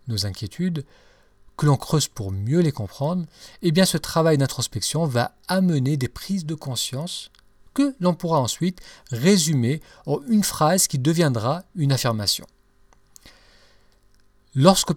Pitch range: 110-175 Hz